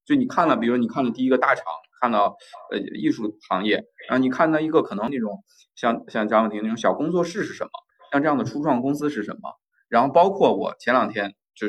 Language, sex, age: Chinese, male, 20-39